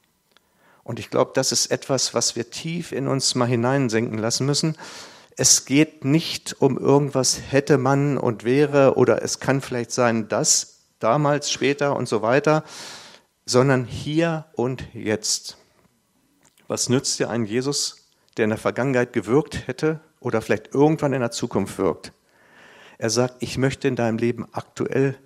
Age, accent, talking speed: 50-69, German, 155 wpm